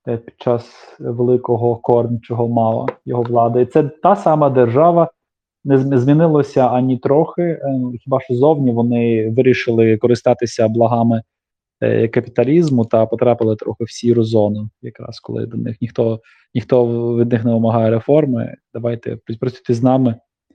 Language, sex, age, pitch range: Ukrainian, male, 20-39, 115-135 Hz